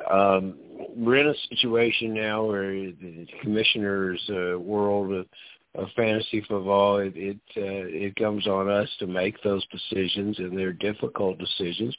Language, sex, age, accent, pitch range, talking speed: English, male, 50-69, American, 90-110 Hz, 150 wpm